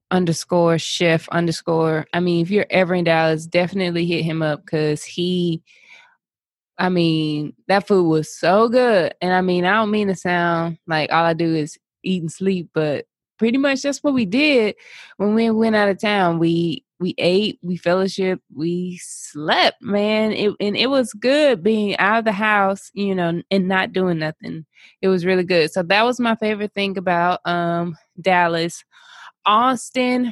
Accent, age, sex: American, 20-39, female